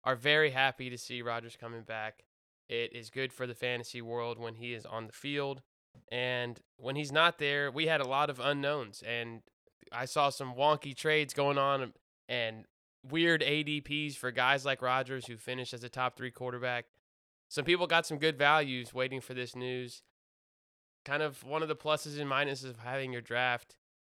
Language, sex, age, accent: English, male, 20-39, American